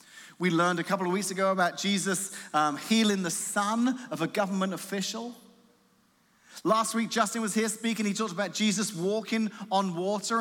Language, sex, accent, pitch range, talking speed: English, male, British, 165-225 Hz, 175 wpm